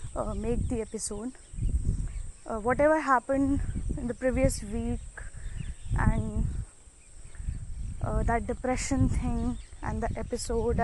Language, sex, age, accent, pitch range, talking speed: Hindi, female, 10-29, native, 205-270 Hz, 105 wpm